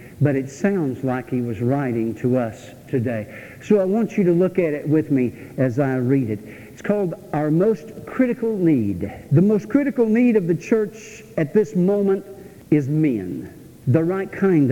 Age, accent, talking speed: 60-79, American, 185 wpm